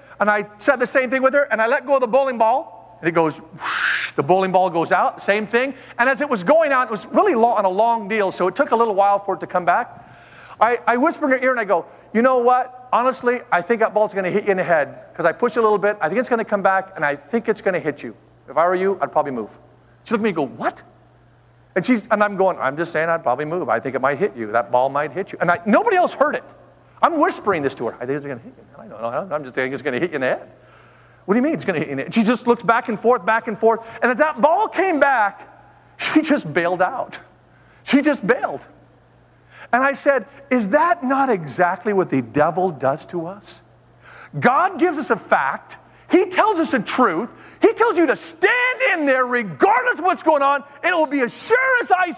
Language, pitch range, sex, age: English, 185-280 Hz, male, 50-69